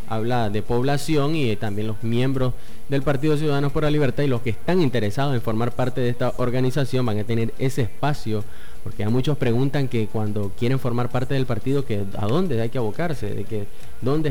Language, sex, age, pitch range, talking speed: Spanish, male, 20-39, 110-130 Hz, 210 wpm